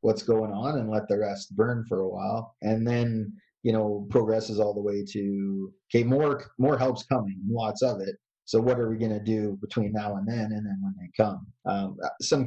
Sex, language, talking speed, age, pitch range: male, English, 220 wpm, 30-49, 105-125 Hz